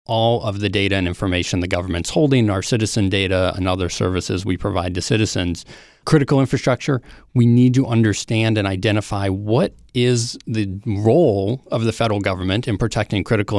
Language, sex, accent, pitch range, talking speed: English, male, American, 95-115 Hz, 170 wpm